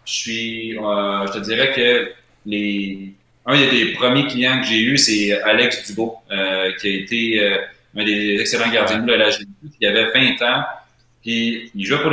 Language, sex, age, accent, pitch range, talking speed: French, male, 30-49, Canadian, 105-125 Hz, 190 wpm